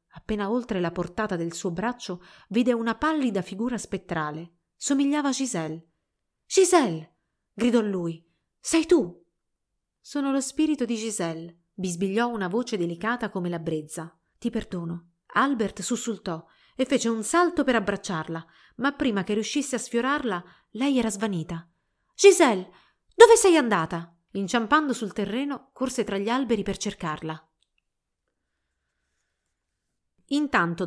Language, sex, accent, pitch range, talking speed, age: Italian, female, native, 175-255 Hz, 125 wpm, 30-49